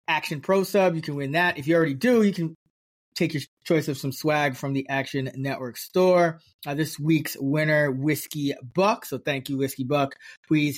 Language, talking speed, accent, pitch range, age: English, 200 wpm, American, 135-165 Hz, 20-39